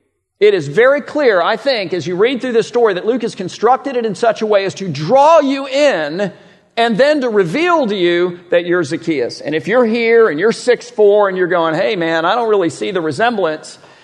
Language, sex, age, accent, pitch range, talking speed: English, male, 50-69, American, 140-225 Hz, 225 wpm